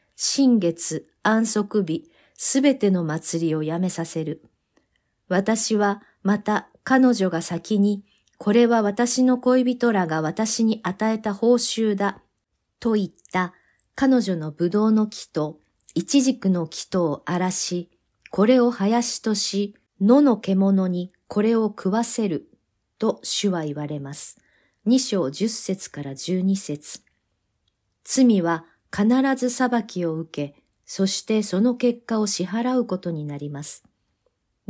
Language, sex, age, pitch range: Japanese, female, 50-69, 170-230 Hz